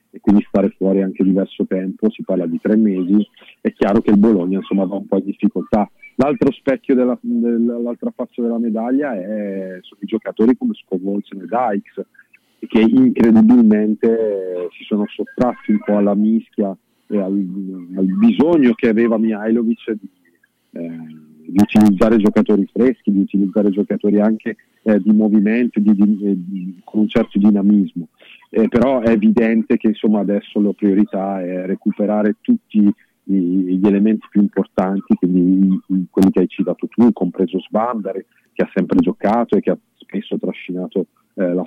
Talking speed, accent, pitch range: 160 wpm, native, 95-110 Hz